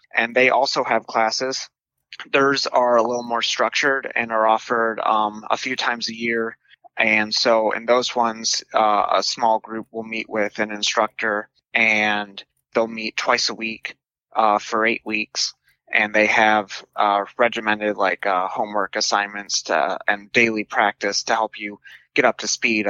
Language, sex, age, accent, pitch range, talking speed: English, male, 20-39, American, 105-115 Hz, 170 wpm